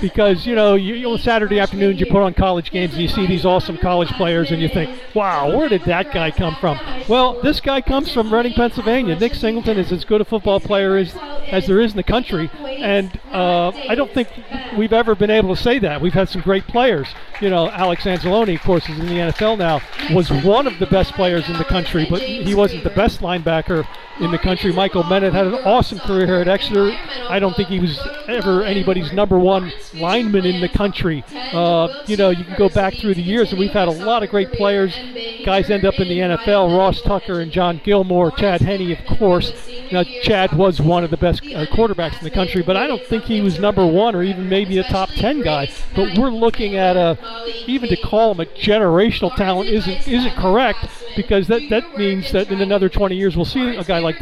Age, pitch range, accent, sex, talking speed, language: 50-69, 180-220 Hz, American, male, 230 wpm, English